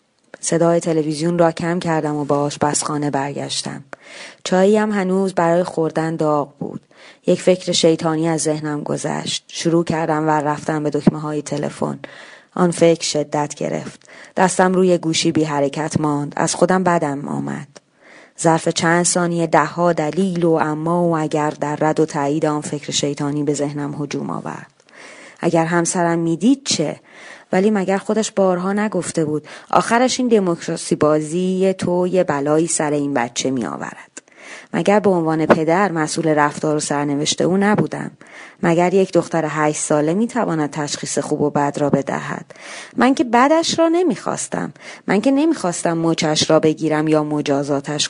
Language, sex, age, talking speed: Persian, female, 20-39, 150 wpm